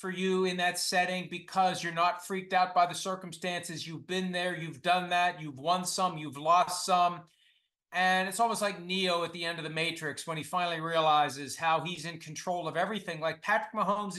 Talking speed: 205 wpm